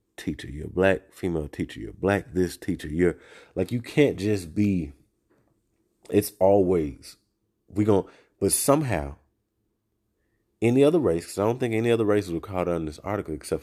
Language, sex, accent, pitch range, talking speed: English, male, American, 80-115 Hz, 165 wpm